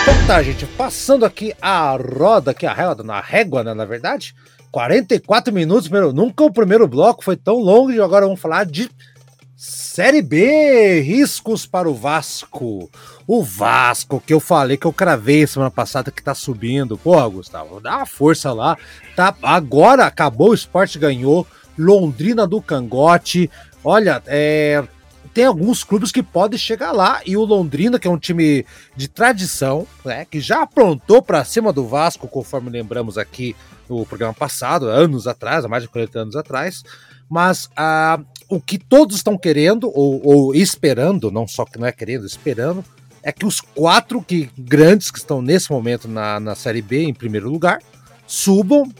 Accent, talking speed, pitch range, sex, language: Brazilian, 175 wpm, 130-195 Hz, male, Portuguese